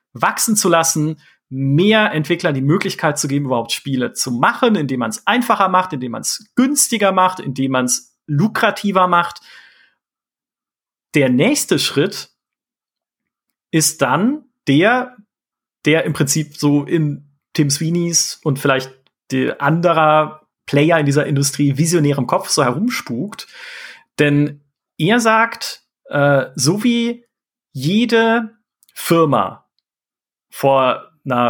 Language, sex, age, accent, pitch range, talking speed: German, male, 40-59, German, 140-200 Hz, 120 wpm